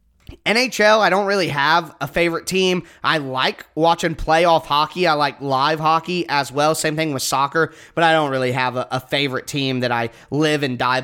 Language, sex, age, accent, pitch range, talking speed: English, male, 20-39, American, 140-180 Hz, 200 wpm